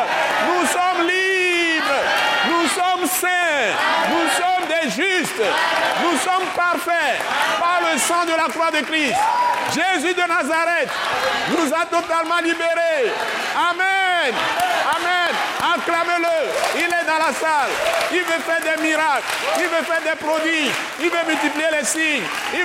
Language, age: French, 60-79